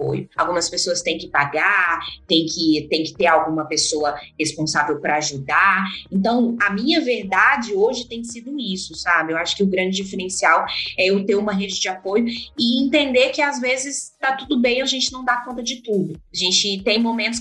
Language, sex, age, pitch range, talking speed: Portuguese, female, 20-39, 195-285 Hz, 195 wpm